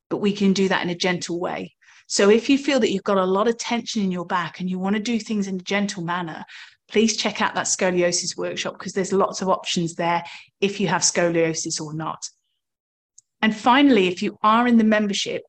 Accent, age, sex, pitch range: British, 30-49, female, 185-230 Hz